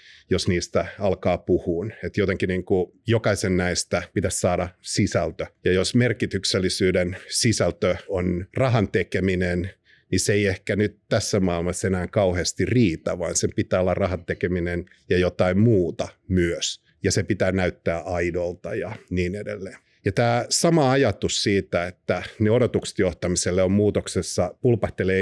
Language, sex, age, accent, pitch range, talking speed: Finnish, male, 50-69, native, 90-110 Hz, 135 wpm